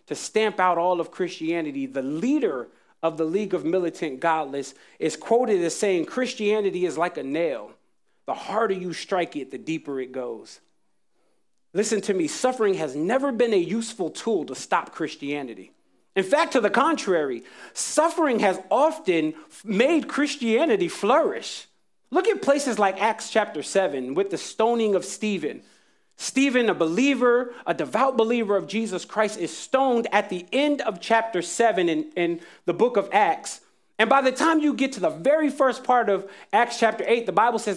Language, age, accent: English, 30-49, American